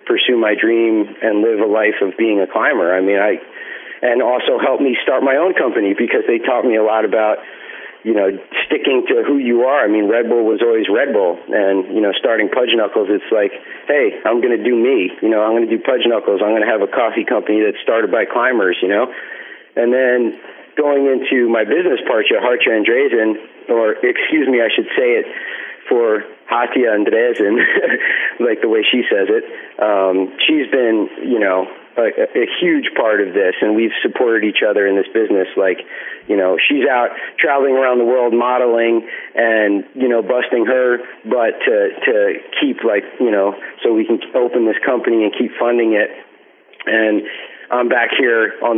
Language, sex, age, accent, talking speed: German, male, 40-59, American, 200 wpm